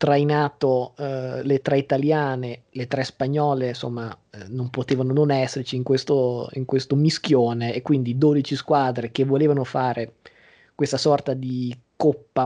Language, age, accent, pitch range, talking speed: Italian, 20-39, native, 125-145 Hz, 145 wpm